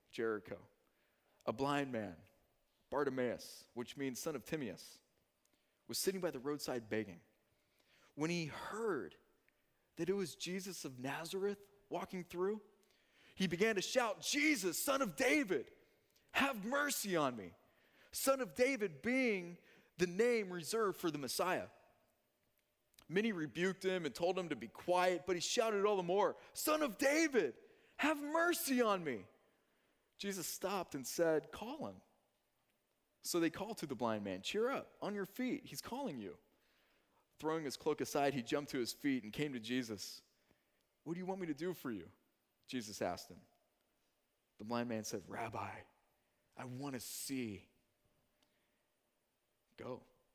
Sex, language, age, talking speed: male, English, 30-49, 150 wpm